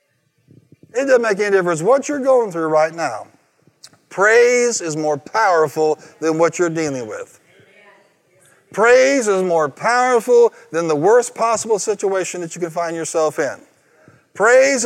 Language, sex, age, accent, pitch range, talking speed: English, male, 50-69, American, 170-250 Hz, 145 wpm